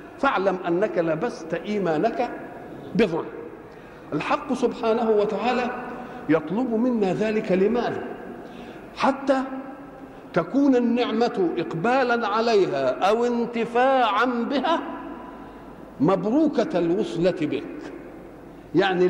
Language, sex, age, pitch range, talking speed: Arabic, male, 50-69, 185-255 Hz, 75 wpm